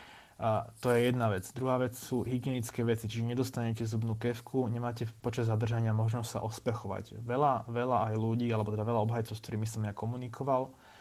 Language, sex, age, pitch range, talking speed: Slovak, male, 20-39, 110-120 Hz, 180 wpm